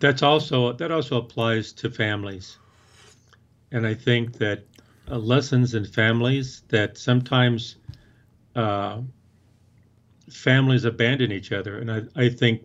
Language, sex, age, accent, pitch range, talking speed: English, male, 50-69, American, 110-125 Hz, 125 wpm